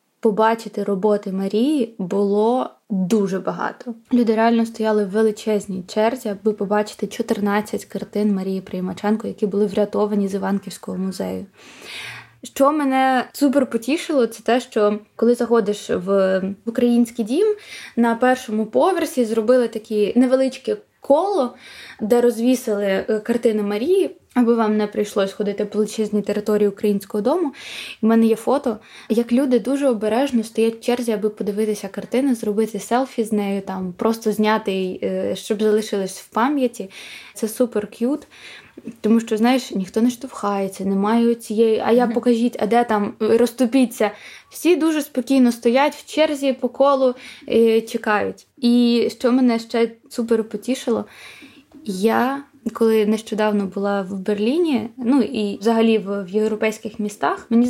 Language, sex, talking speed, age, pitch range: Ukrainian, female, 135 wpm, 20-39, 210-250 Hz